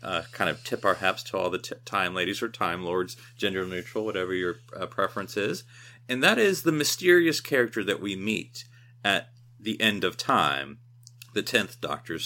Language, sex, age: English, male, 30-49